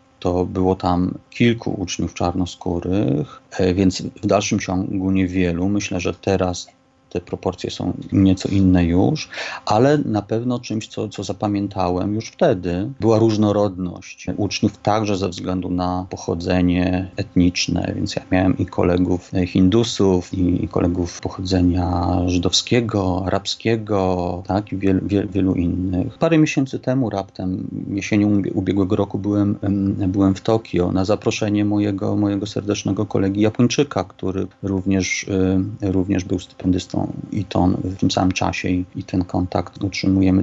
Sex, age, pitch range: male, 40-59, 90-105 Hz